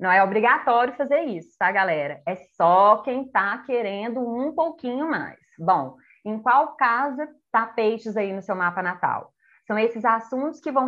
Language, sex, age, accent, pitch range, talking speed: Portuguese, female, 20-39, Brazilian, 190-260 Hz, 170 wpm